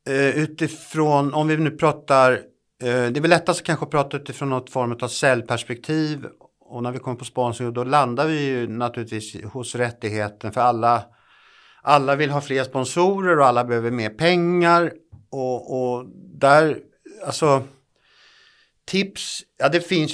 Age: 50-69